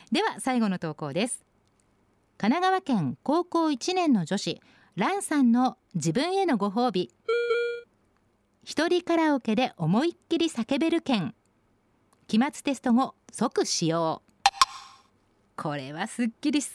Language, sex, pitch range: Japanese, female, 175-275 Hz